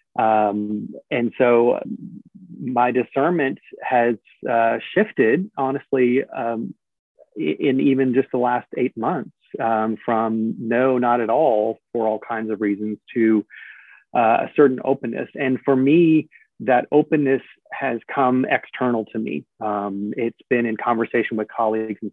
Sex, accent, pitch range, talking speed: male, American, 105-125 Hz, 140 wpm